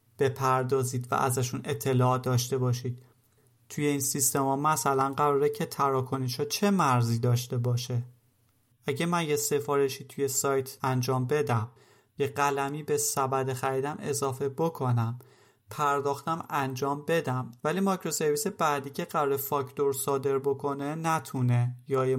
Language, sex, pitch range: Persian, male, 130-150 Hz